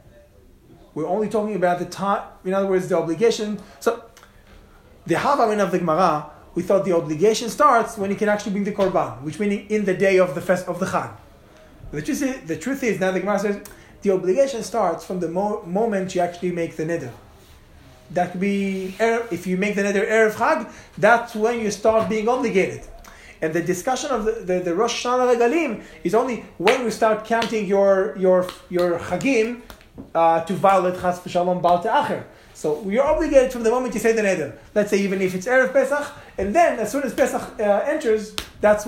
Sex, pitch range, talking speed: male, 175-220 Hz, 205 wpm